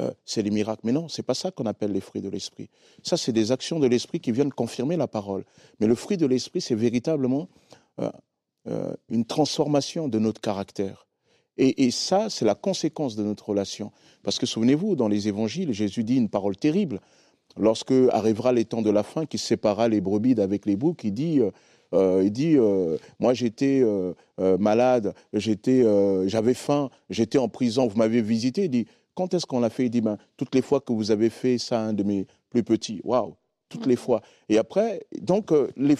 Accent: French